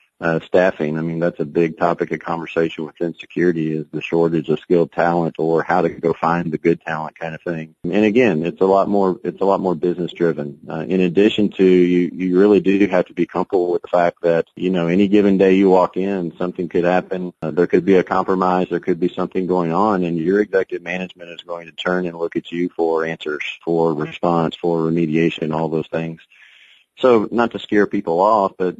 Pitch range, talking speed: 80-90 Hz, 225 wpm